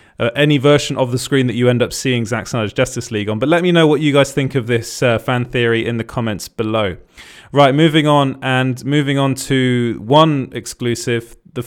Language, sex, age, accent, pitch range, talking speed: English, male, 20-39, British, 115-145 Hz, 220 wpm